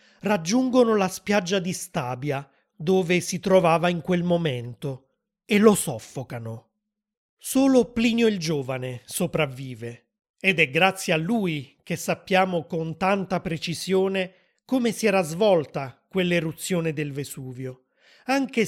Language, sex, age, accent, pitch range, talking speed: Italian, male, 30-49, native, 155-210 Hz, 120 wpm